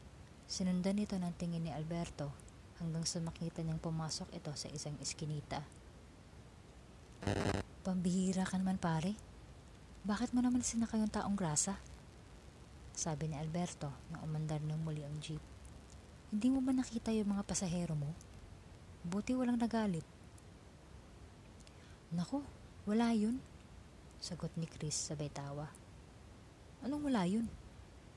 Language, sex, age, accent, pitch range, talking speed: Filipino, female, 20-39, native, 145-195 Hz, 120 wpm